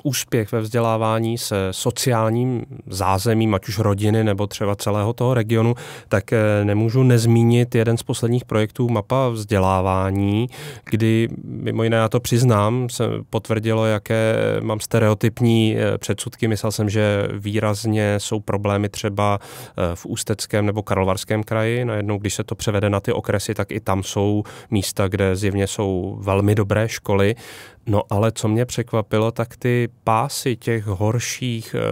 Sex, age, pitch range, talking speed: male, 20-39, 105-120 Hz, 145 wpm